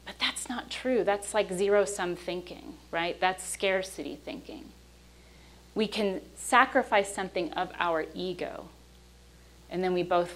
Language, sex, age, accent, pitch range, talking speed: English, female, 30-49, American, 145-195 Hz, 120 wpm